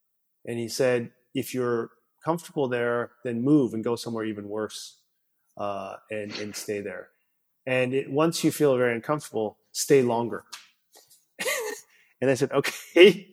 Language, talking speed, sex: English, 145 wpm, male